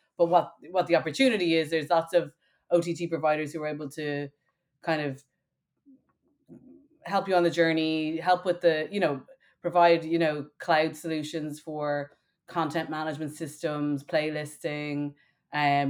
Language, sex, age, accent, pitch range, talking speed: English, female, 30-49, Irish, 150-170 Hz, 145 wpm